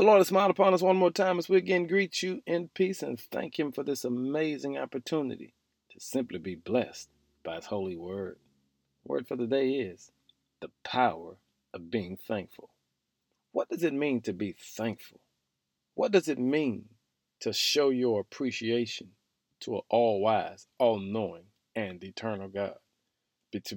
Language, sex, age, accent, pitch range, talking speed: English, male, 40-59, American, 110-160 Hz, 160 wpm